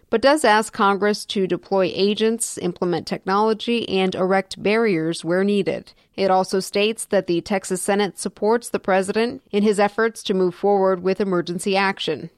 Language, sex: English, female